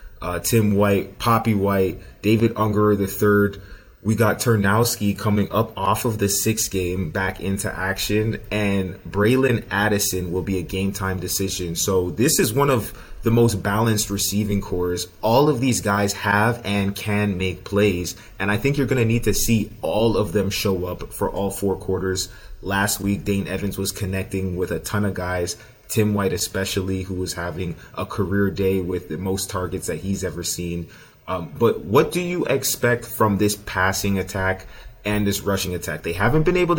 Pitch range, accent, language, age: 95-110 Hz, American, English, 30-49